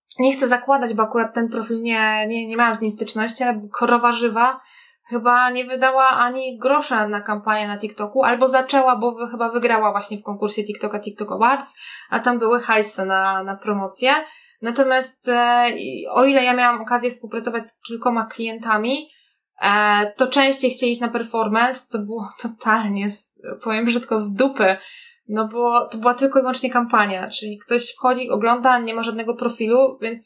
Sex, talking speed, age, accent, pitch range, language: female, 170 wpm, 20-39, native, 215-255 Hz, Polish